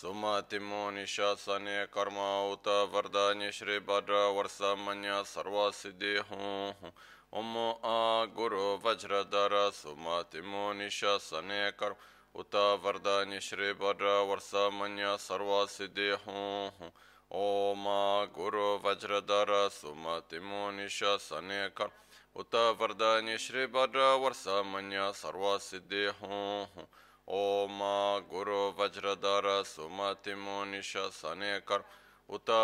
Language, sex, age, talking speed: Italian, male, 20-39, 70 wpm